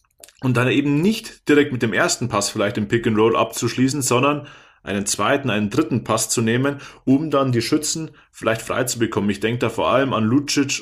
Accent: German